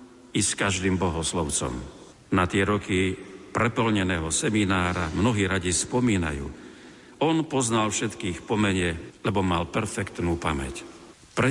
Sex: male